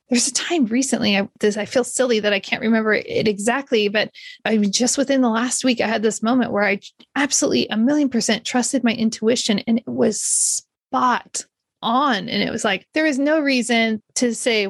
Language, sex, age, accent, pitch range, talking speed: English, female, 30-49, American, 220-280 Hz, 195 wpm